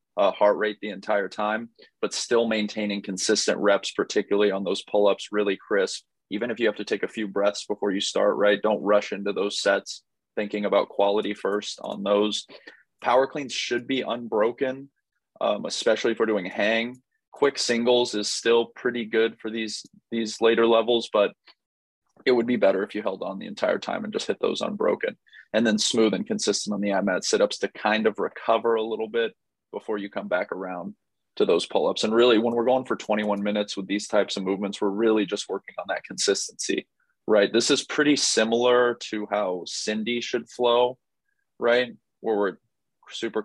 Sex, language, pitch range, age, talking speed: male, English, 105-120 Hz, 20-39, 190 wpm